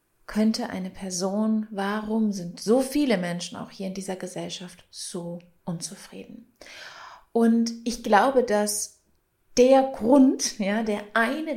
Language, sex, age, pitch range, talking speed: German, female, 30-49, 195-230 Hz, 125 wpm